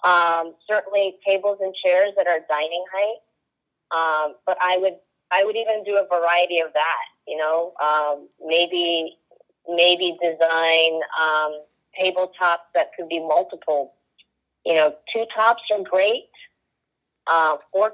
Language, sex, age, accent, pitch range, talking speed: English, female, 30-49, American, 165-205 Hz, 135 wpm